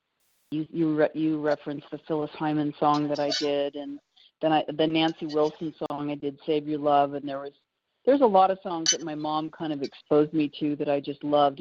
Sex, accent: female, American